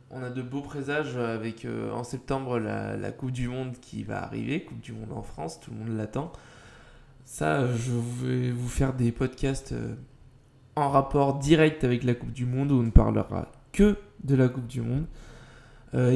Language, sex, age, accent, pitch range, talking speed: French, male, 20-39, French, 120-135 Hz, 195 wpm